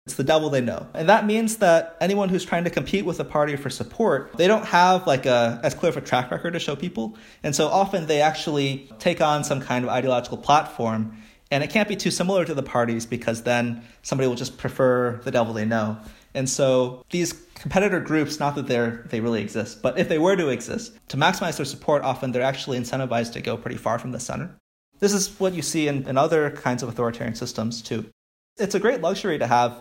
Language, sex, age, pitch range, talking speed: English, male, 30-49, 115-155 Hz, 230 wpm